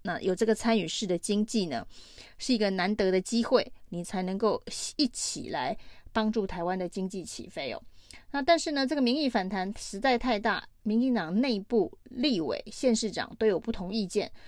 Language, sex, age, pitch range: Chinese, female, 30-49, 190-235 Hz